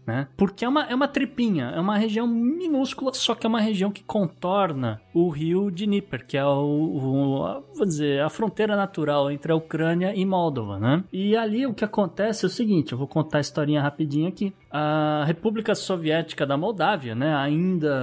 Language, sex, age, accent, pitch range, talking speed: Portuguese, male, 20-39, Brazilian, 125-195 Hz, 195 wpm